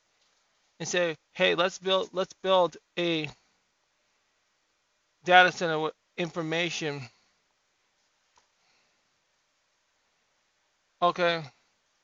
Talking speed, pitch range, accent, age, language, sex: 65 wpm, 160-190 Hz, American, 20-39, English, male